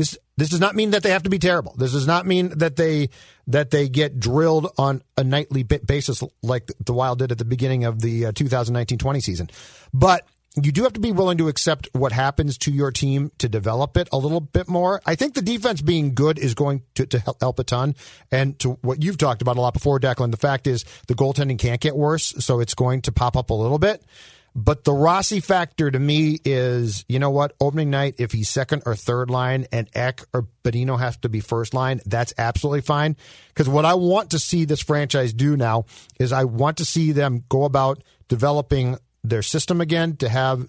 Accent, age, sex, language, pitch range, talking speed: American, 40-59, male, English, 125-150 Hz, 225 wpm